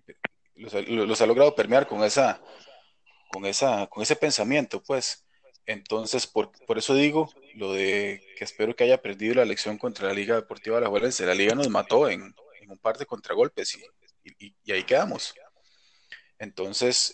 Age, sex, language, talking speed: 30-49, male, Spanish, 175 wpm